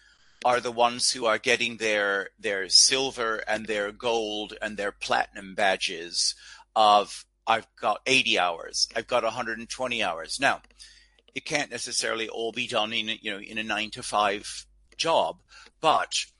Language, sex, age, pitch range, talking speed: English, male, 50-69, 105-130 Hz, 165 wpm